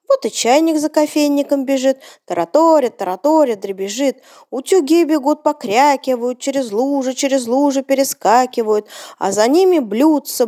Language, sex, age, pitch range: Ukrainian, female, 20-39, 215-285 Hz